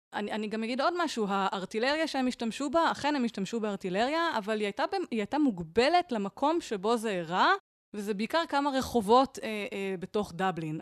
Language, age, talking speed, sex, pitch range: Hebrew, 20-39, 175 wpm, female, 190-270 Hz